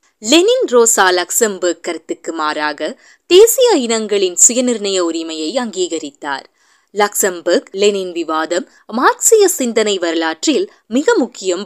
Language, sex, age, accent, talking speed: Tamil, female, 20-39, native, 95 wpm